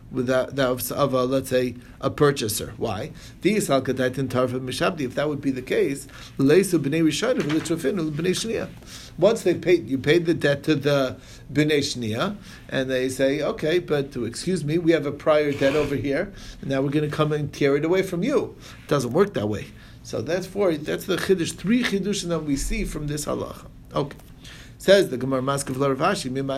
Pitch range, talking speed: 135-190 Hz, 175 wpm